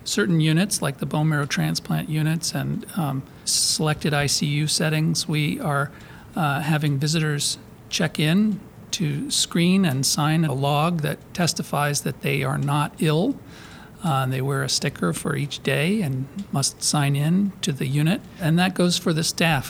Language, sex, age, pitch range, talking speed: English, male, 50-69, 145-175 Hz, 165 wpm